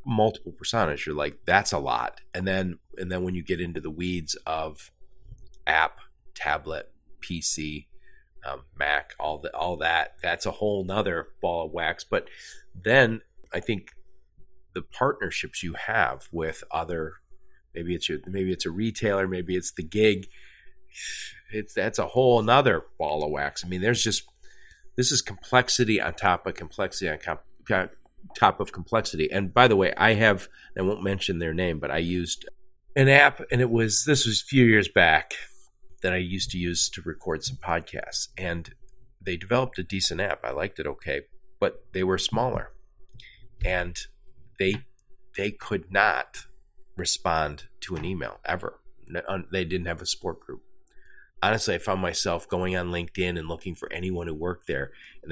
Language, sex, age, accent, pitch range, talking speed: English, male, 40-59, American, 90-125 Hz, 170 wpm